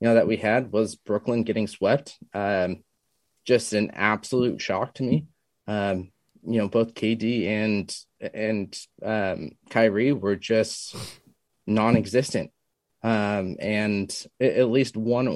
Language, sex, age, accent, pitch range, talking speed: English, male, 20-39, American, 105-120 Hz, 130 wpm